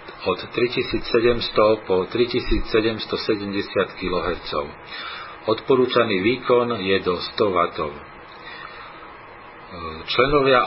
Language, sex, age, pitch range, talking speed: Slovak, male, 40-59, 100-125 Hz, 65 wpm